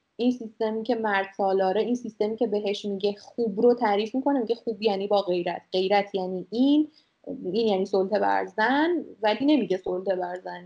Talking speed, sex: 180 wpm, female